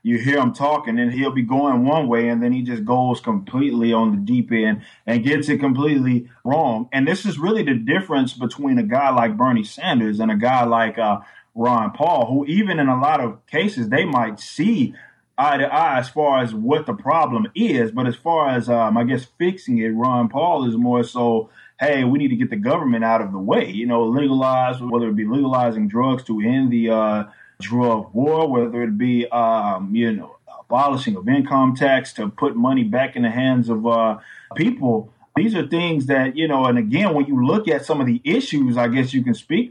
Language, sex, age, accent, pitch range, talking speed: English, male, 20-39, American, 120-160 Hz, 220 wpm